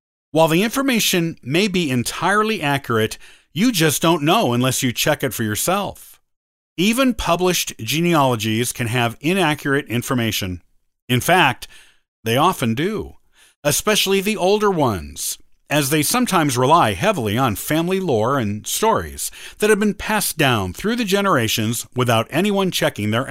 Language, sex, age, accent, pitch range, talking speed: English, male, 50-69, American, 120-180 Hz, 140 wpm